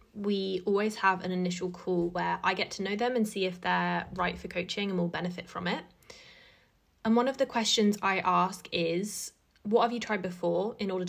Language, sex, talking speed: English, female, 210 wpm